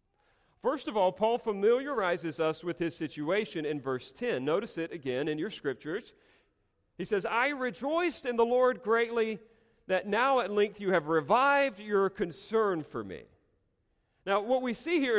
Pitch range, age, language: 135-225 Hz, 40-59, English